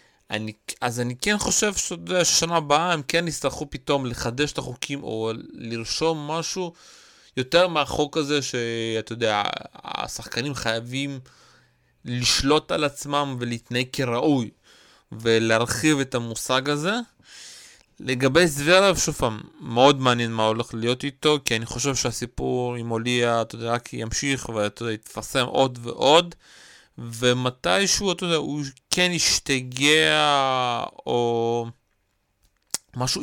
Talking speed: 110 wpm